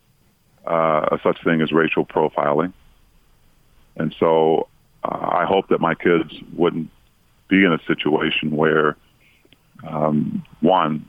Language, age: English, 40-59